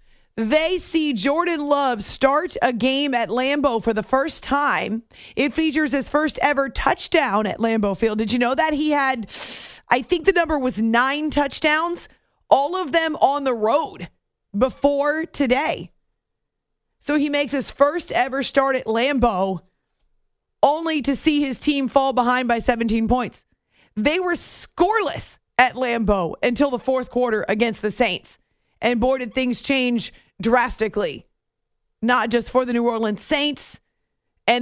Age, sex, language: 30-49, female, English